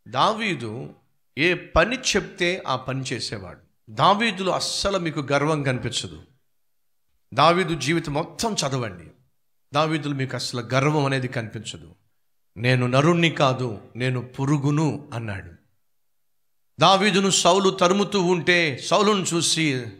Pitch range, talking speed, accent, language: 125-180 Hz, 100 wpm, native, Telugu